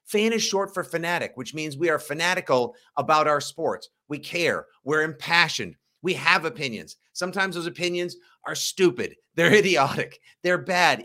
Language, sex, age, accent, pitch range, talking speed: English, male, 50-69, American, 185-275 Hz, 155 wpm